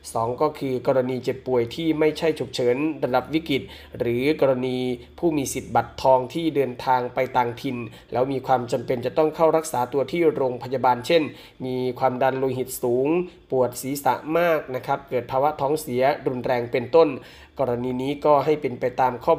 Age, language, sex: 20-39, Thai, male